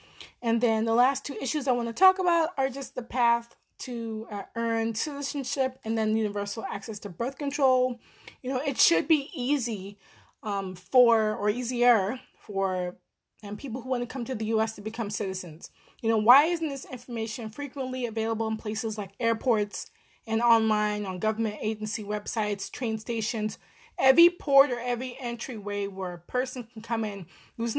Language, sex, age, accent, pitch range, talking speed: English, female, 20-39, American, 220-275 Hz, 175 wpm